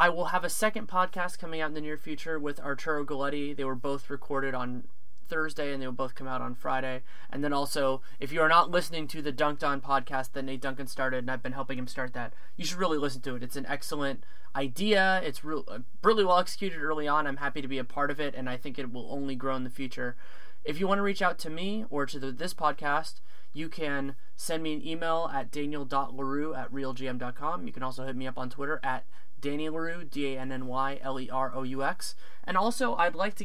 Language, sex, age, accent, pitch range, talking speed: English, male, 20-39, American, 135-165 Hz, 225 wpm